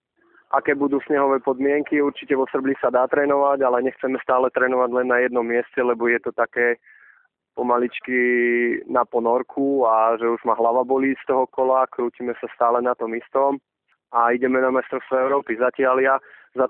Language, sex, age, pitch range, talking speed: English, male, 20-39, 125-140 Hz, 175 wpm